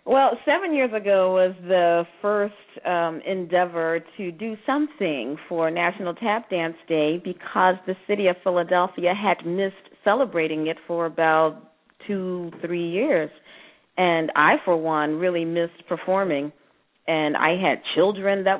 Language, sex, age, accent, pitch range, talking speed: English, female, 40-59, American, 170-215 Hz, 140 wpm